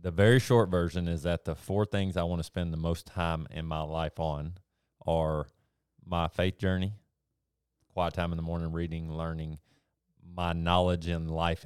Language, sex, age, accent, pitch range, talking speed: English, male, 30-49, American, 80-95 Hz, 180 wpm